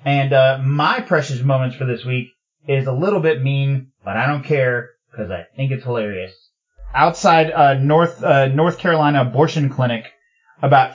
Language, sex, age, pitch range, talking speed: English, male, 30-49, 130-165 Hz, 170 wpm